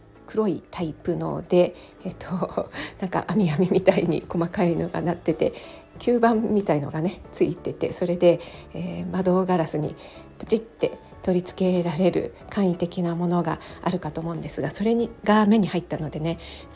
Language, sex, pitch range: Japanese, female, 170-225 Hz